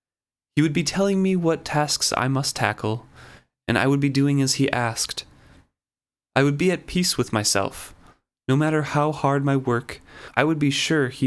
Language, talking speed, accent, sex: English, 190 wpm, American, male